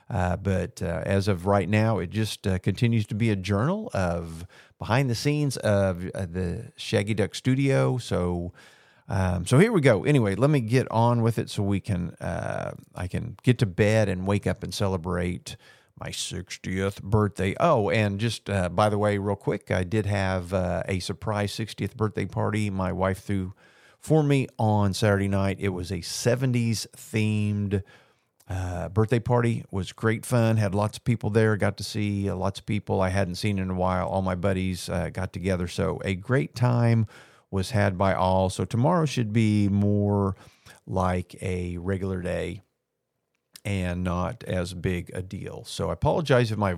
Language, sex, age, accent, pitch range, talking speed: English, male, 40-59, American, 95-115 Hz, 185 wpm